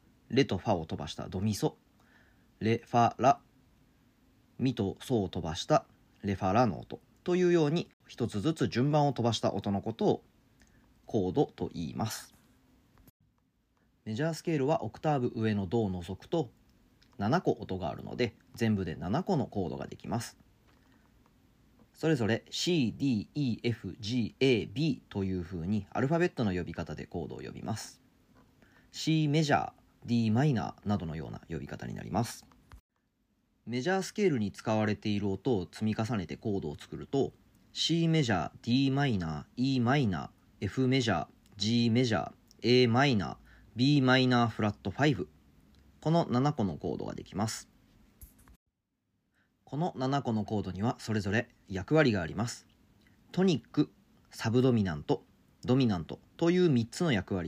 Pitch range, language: 100-135 Hz, Japanese